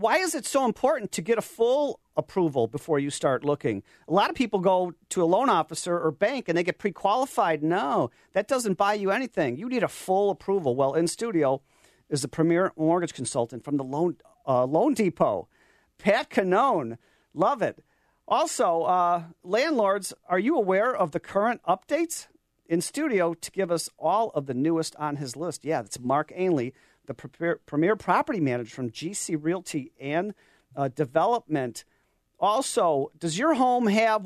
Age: 40-59